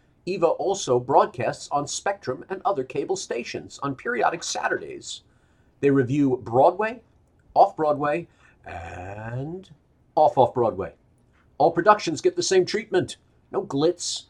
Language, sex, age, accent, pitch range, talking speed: English, male, 50-69, American, 115-160 Hz, 110 wpm